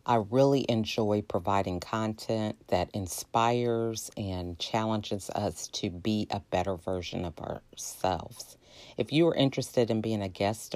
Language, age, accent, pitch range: English, 40-59, American, 100-120 Hz